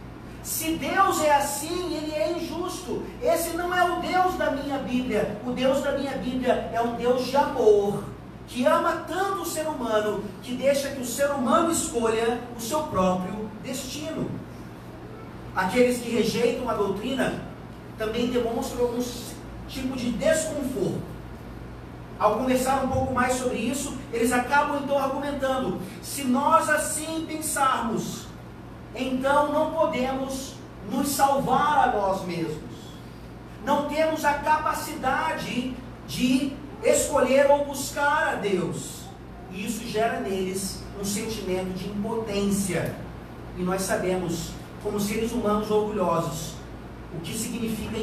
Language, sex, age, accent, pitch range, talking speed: Portuguese, male, 40-59, Brazilian, 210-285 Hz, 130 wpm